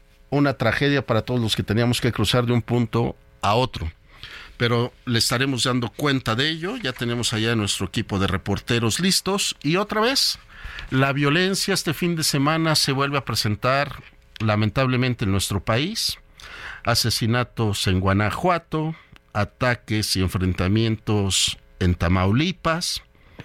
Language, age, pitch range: Spanish, 50-69, 105-145 Hz